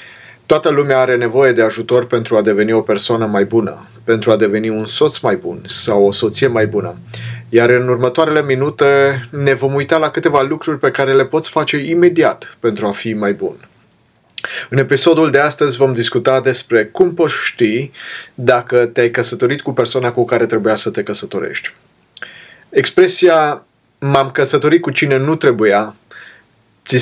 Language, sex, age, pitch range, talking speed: Romanian, male, 30-49, 120-150 Hz, 165 wpm